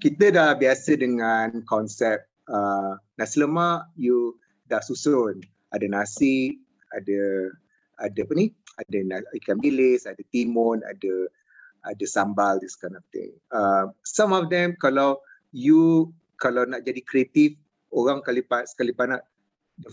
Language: Malay